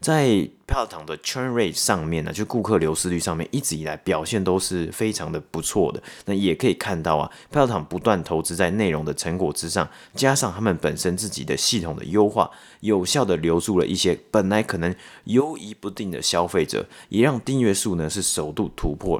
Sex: male